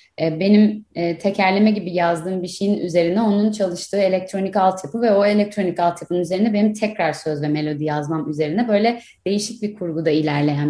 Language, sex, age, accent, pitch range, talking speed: Turkish, female, 30-49, native, 175-220 Hz, 155 wpm